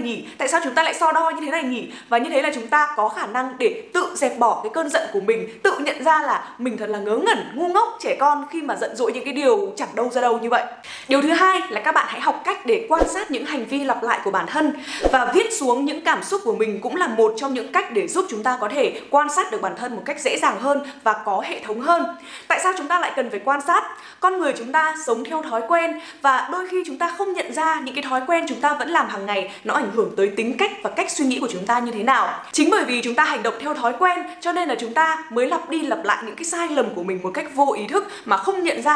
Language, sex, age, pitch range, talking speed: Vietnamese, female, 10-29, 235-340 Hz, 300 wpm